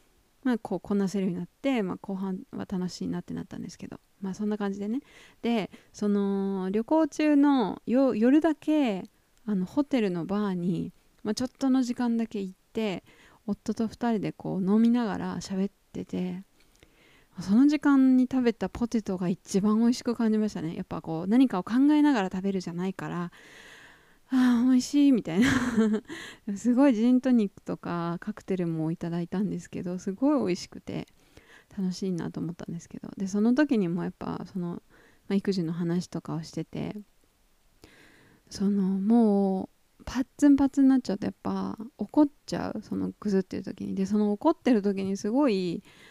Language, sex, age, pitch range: Japanese, female, 20-39, 185-245 Hz